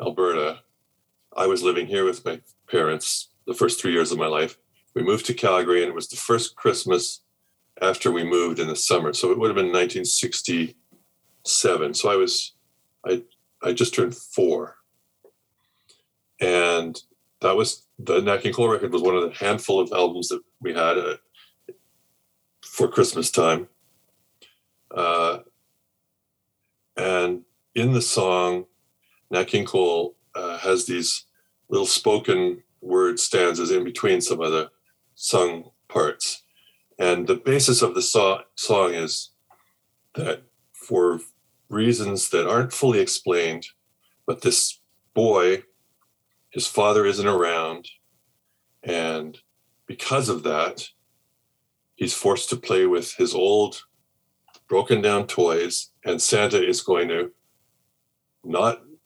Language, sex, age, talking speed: English, male, 40-59, 130 wpm